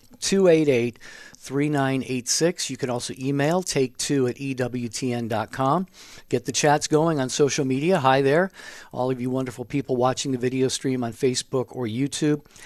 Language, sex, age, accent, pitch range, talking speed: English, male, 50-69, American, 120-145 Hz, 145 wpm